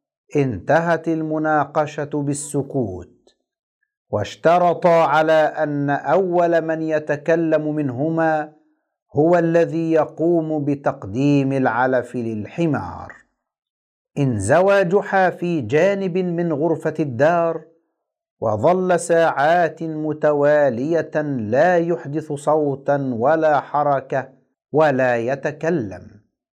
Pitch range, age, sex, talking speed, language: 140-165 Hz, 50-69, male, 75 wpm, Arabic